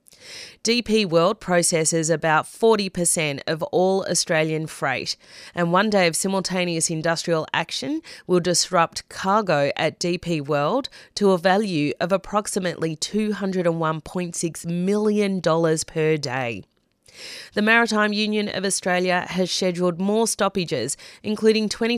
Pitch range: 165-205 Hz